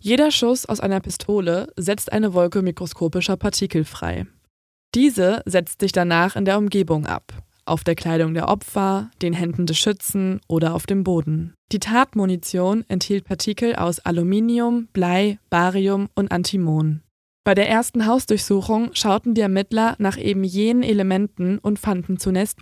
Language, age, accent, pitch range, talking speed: German, 20-39, German, 175-215 Hz, 150 wpm